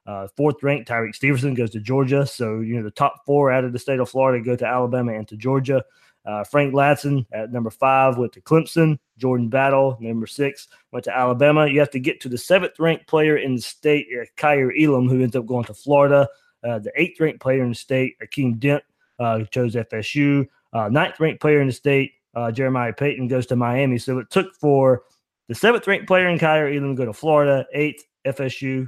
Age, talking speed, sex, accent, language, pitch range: 20-39, 210 wpm, male, American, English, 125-145 Hz